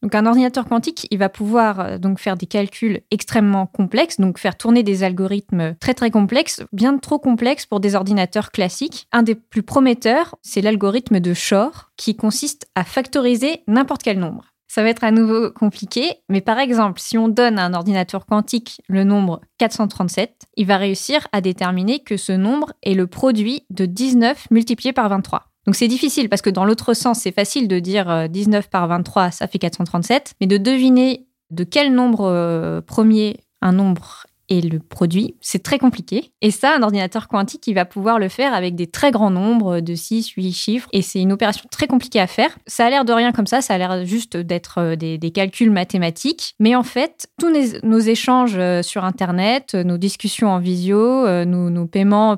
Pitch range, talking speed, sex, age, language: 190-240 Hz, 195 wpm, female, 20-39, French